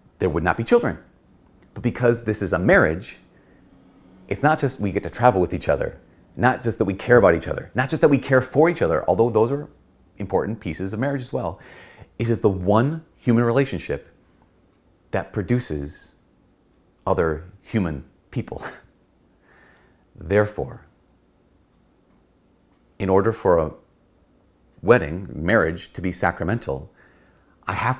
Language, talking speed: English, 150 wpm